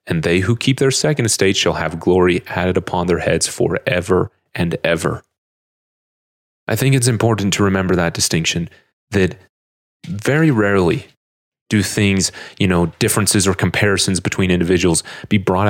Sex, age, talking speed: male, 30-49, 150 wpm